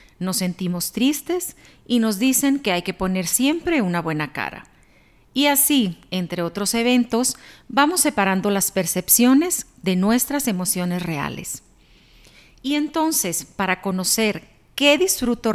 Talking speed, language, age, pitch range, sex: 125 wpm, Spanish, 40-59, 185-260 Hz, female